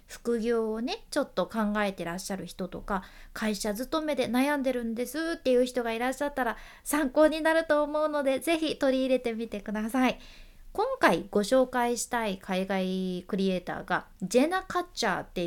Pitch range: 200-300 Hz